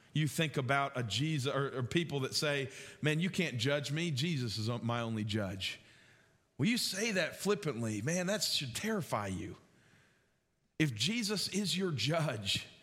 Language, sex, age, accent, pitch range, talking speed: English, male, 40-59, American, 155-235 Hz, 160 wpm